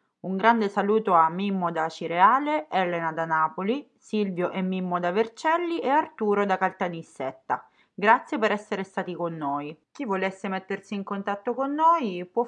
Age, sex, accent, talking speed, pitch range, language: 30-49, female, native, 160 wpm, 165-215 Hz, Italian